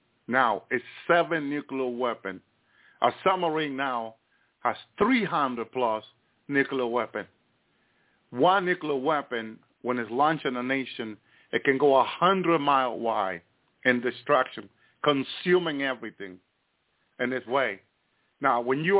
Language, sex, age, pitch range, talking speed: English, male, 50-69, 120-165 Hz, 115 wpm